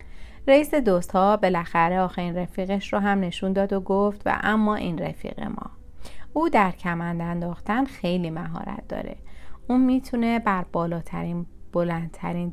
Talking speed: 135 wpm